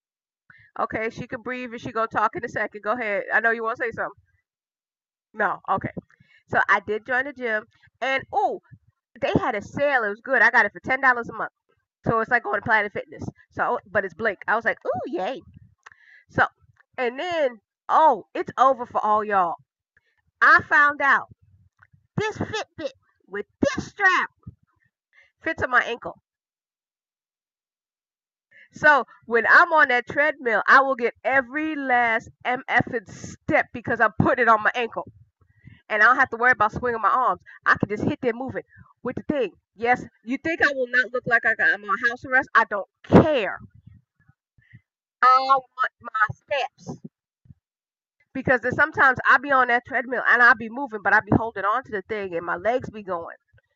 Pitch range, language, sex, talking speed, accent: 210-270 Hz, English, female, 180 wpm, American